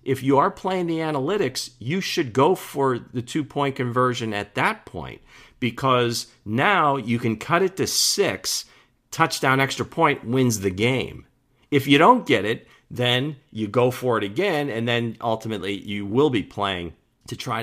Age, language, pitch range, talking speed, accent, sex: 50-69, English, 100-130 Hz, 175 wpm, American, male